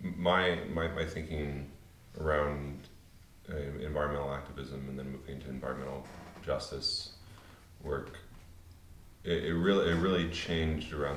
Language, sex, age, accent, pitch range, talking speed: English, male, 30-49, American, 70-85 Hz, 120 wpm